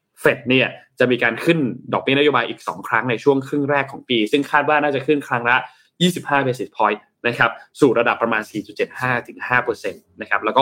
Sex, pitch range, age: male, 120-155 Hz, 20-39